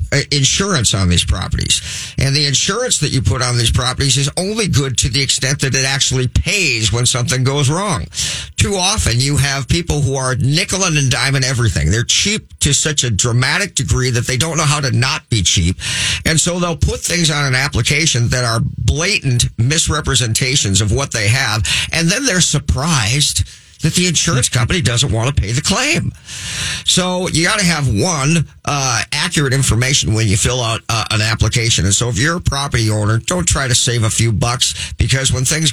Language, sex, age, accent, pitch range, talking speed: English, male, 50-69, American, 115-145 Hz, 200 wpm